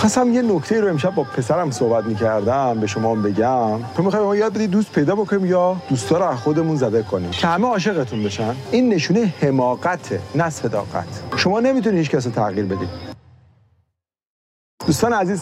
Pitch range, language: 115-190 Hz, Persian